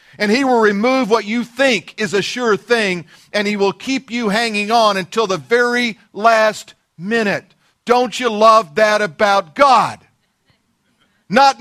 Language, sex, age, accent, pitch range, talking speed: English, male, 50-69, American, 185-230 Hz, 155 wpm